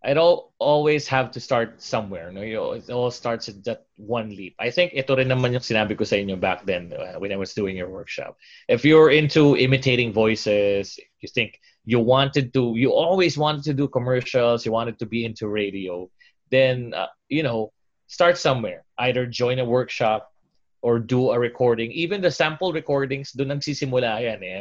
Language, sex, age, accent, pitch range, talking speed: English, male, 20-39, Filipino, 110-135 Hz, 190 wpm